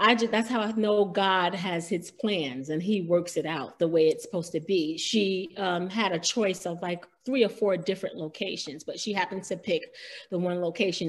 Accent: American